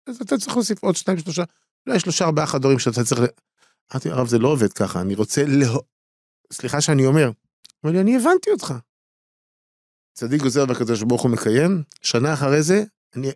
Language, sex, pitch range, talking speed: Hebrew, male, 105-155 Hz, 185 wpm